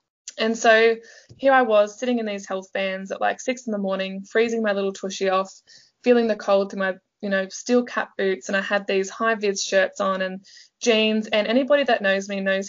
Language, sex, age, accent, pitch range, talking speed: English, female, 20-39, Australian, 195-230 Hz, 220 wpm